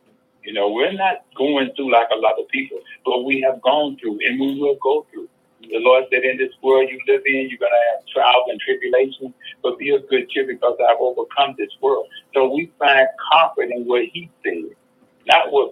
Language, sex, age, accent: English, male, 60-79, American